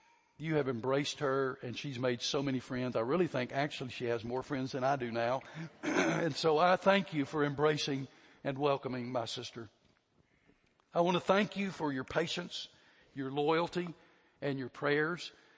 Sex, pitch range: male, 135-165 Hz